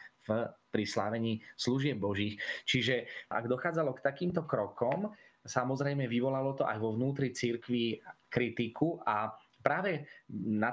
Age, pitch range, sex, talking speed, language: 30-49, 115-150 Hz, male, 115 wpm, Slovak